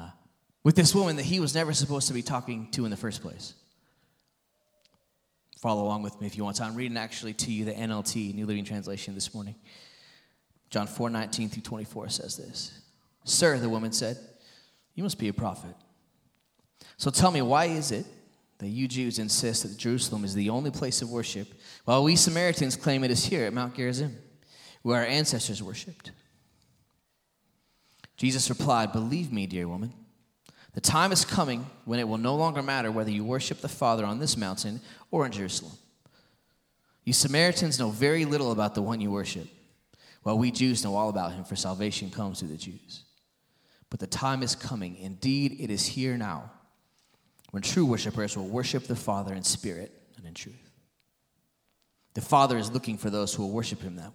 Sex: male